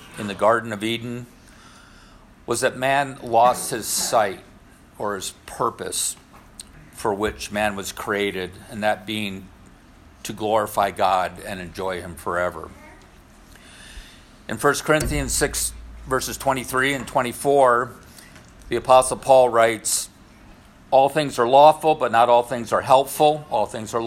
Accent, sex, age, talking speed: American, male, 50-69, 135 wpm